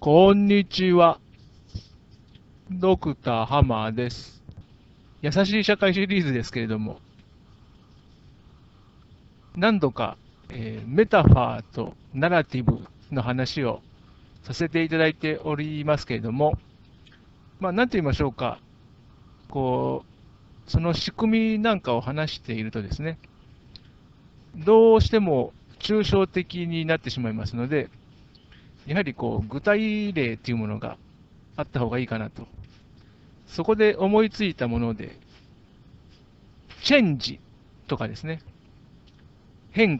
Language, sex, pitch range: Japanese, male, 115-180 Hz